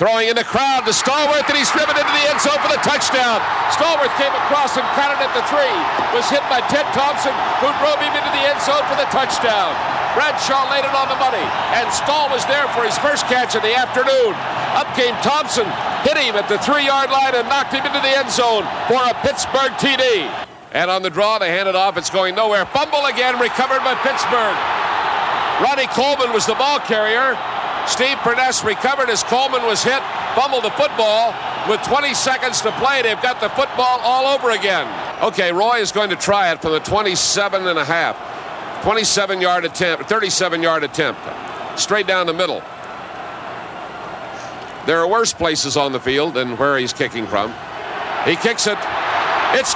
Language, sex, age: English, male, 50-69